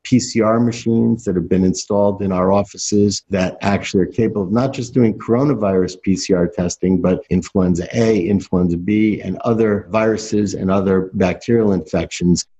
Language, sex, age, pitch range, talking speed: English, male, 50-69, 95-120 Hz, 150 wpm